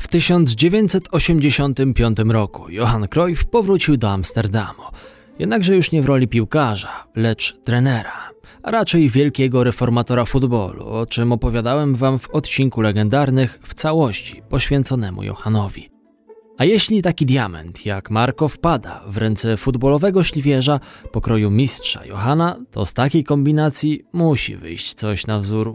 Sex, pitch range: male, 110-155 Hz